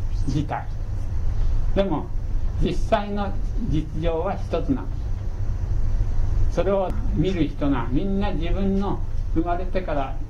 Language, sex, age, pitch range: Japanese, male, 60-79, 95-125 Hz